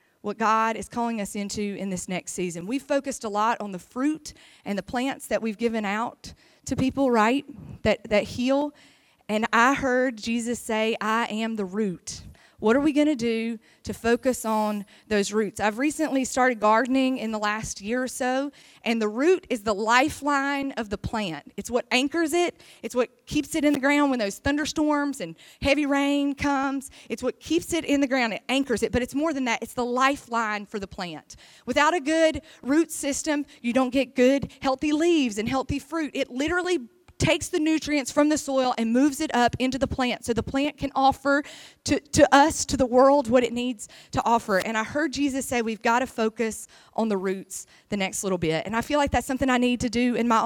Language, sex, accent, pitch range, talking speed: English, female, American, 220-280 Hz, 215 wpm